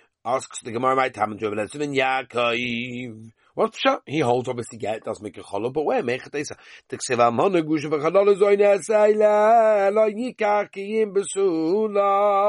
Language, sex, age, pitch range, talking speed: English, male, 50-69, 135-210 Hz, 140 wpm